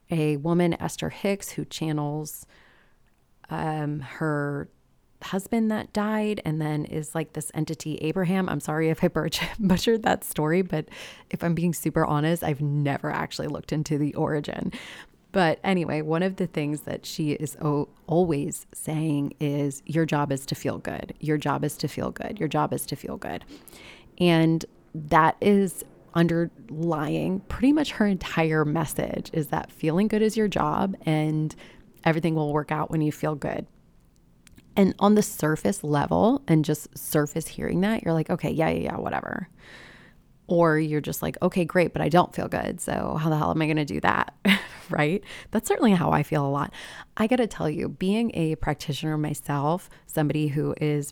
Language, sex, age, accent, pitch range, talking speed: English, female, 30-49, American, 150-185 Hz, 175 wpm